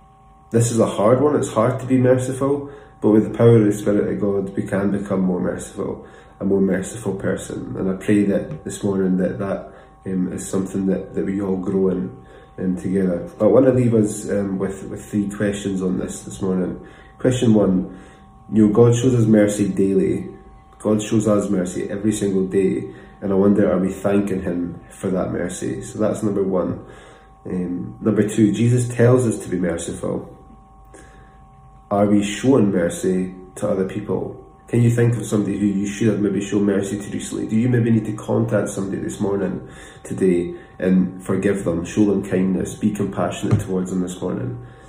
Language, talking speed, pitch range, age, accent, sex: English, 190 wpm, 95-105 Hz, 20-39, British, male